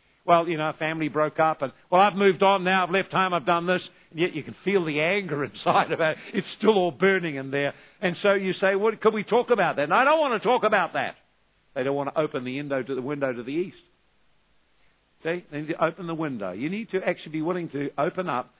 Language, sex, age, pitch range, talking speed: English, male, 50-69, 140-180 Hz, 255 wpm